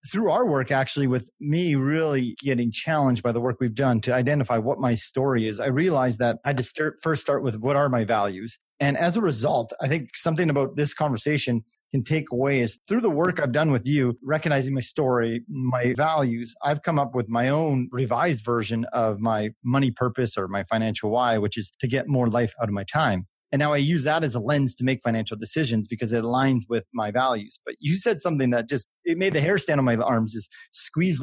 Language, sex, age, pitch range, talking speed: English, male, 30-49, 115-145 Hz, 230 wpm